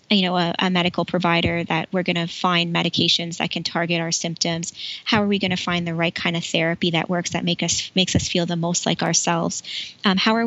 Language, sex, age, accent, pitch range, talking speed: English, female, 20-39, American, 170-200 Hz, 245 wpm